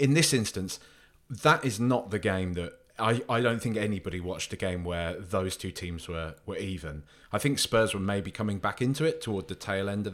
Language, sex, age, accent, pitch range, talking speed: English, male, 20-39, British, 90-125 Hz, 225 wpm